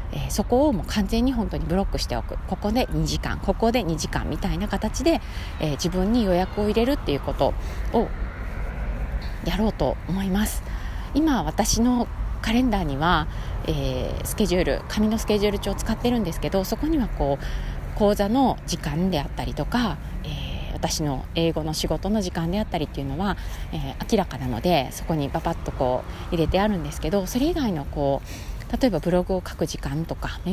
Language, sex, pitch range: Japanese, female, 145-220 Hz